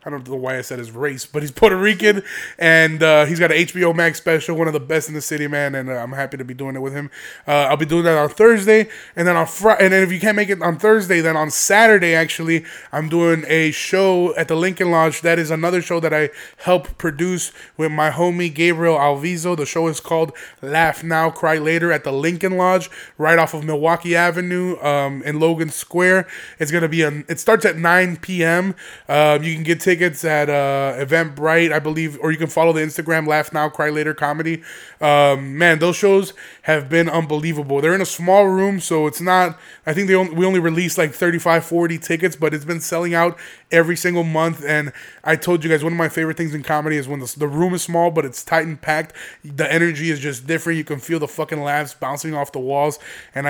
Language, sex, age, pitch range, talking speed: English, male, 20-39, 150-175 Hz, 235 wpm